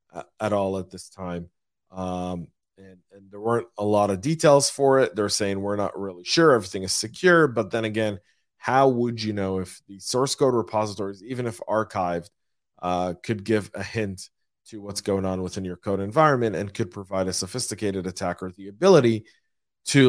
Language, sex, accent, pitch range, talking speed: English, male, American, 100-130 Hz, 185 wpm